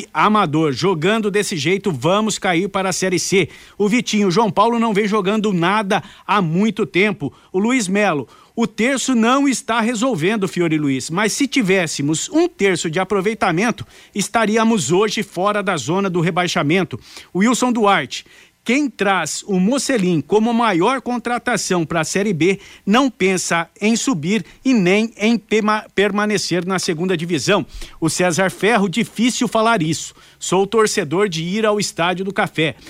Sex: male